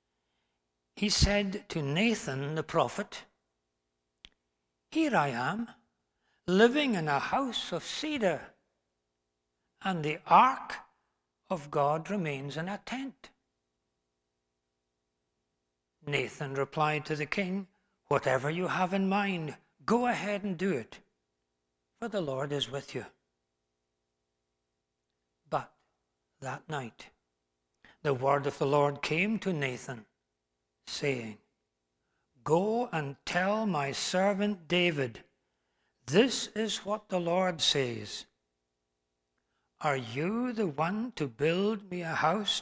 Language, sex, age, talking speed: English, male, 60-79, 110 wpm